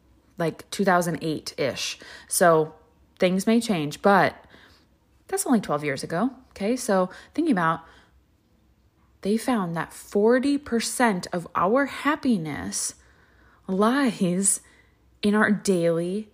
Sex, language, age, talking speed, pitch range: female, English, 20-39, 105 wpm, 170-215 Hz